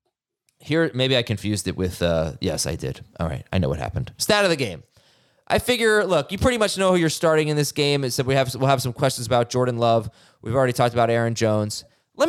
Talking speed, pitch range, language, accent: 250 wpm, 115-150 Hz, English, American